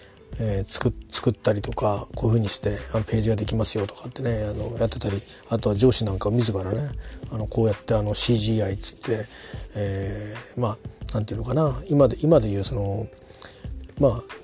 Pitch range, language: 105-125 Hz, Japanese